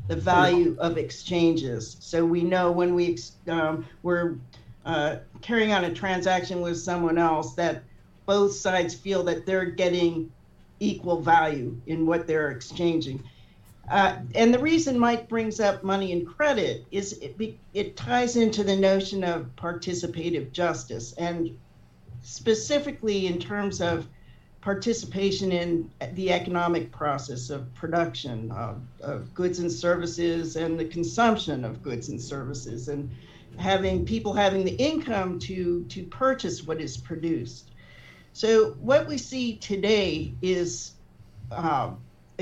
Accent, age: American, 50-69